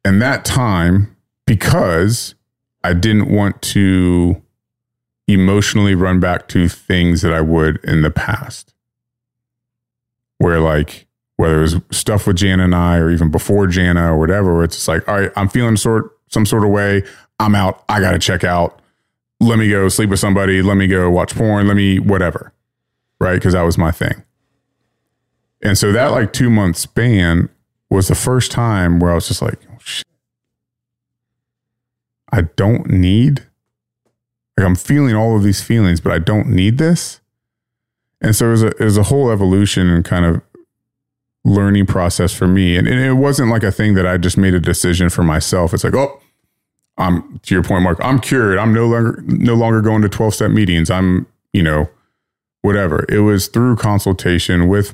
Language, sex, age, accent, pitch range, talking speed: English, male, 30-49, American, 90-115 Hz, 180 wpm